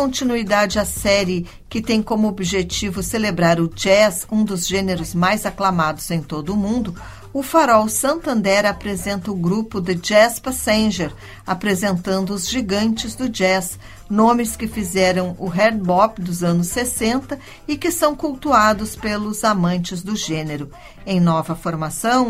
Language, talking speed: Portuguese, 140 wpm